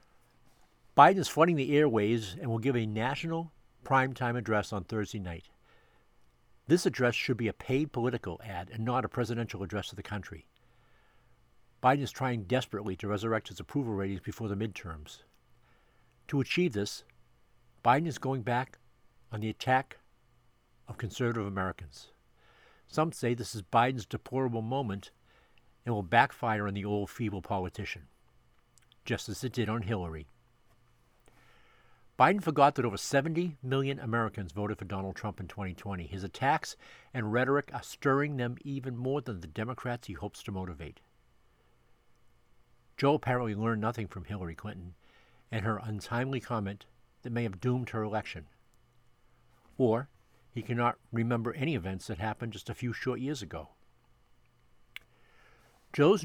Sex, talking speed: male, 145 wpm